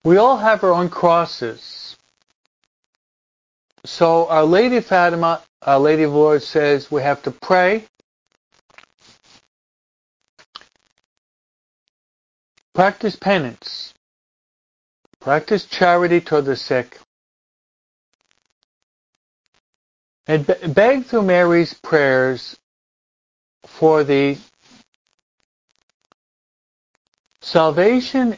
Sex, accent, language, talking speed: male, American, English, 75 wpm